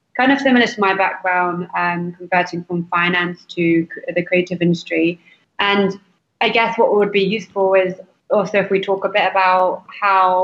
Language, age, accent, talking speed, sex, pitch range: English, 20-39, British, 180 wpm, female, 175-195 Hz